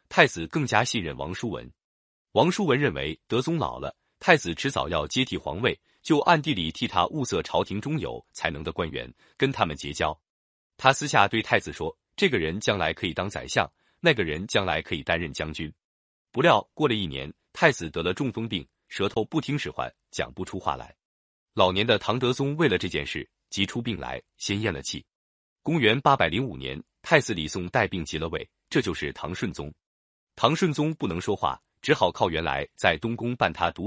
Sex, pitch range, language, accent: male, 80-130 Hz, Chinese, native